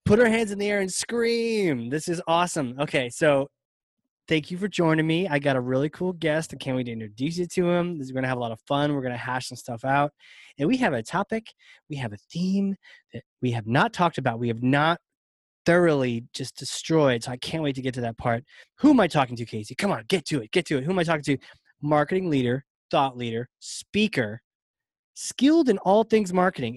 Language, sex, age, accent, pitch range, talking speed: English, male, 20-39, American, 125-185 Hz, 240 wpm